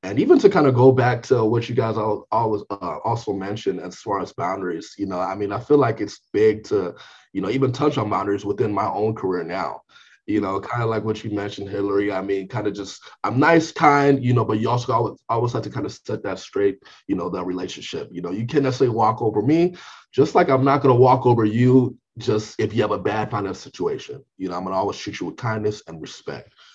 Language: English